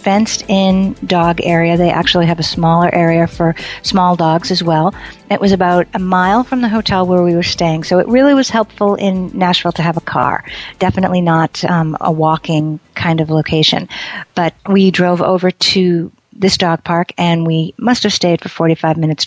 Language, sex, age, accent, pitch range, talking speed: English, female, 50-69, American, 165-200 Hz, 195 wpm